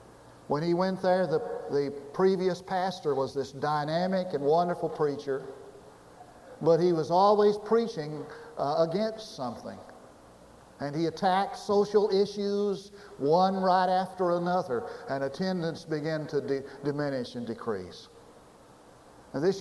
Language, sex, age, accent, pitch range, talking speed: English, male, 60-79, American, 150-200 Hz, 125 wpm